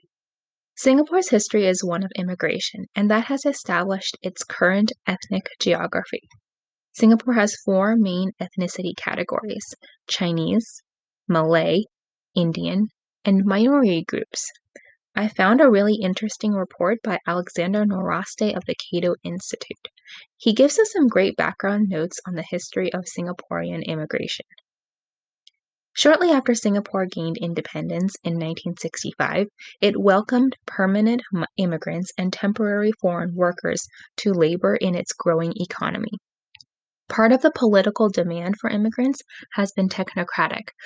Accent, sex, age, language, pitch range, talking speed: American, female, 10-29, English, 180-225 Hz, 120 wpm